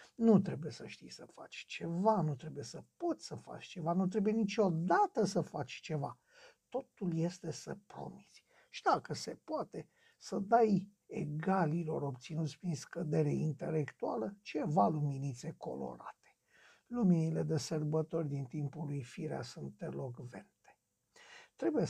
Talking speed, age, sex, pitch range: 130 wpm, 60-79, male, 150-200 Hz